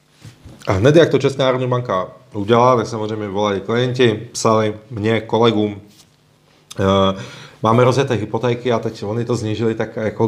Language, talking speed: Czech, 145 wpm